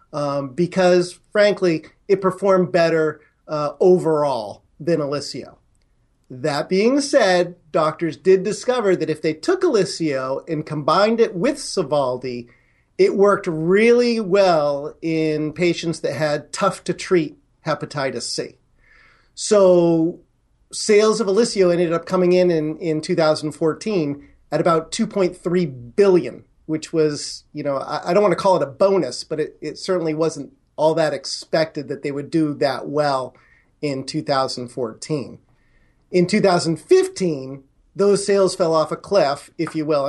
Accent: American